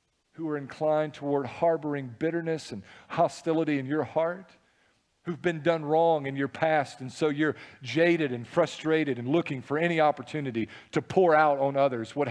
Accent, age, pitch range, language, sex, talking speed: American, 50-69, 125-170 Hz, English, male, 170 wpm